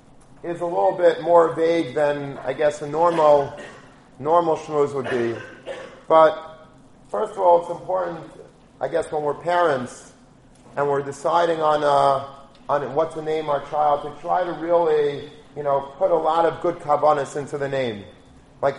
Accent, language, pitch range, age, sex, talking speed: American, English, 130-160 Hz, 30-49, male, 170 wpm